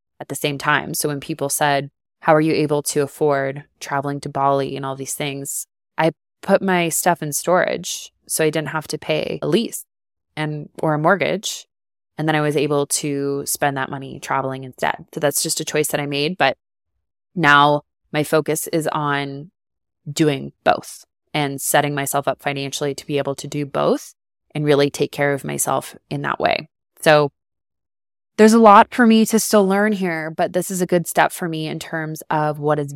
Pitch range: 140-160 Hz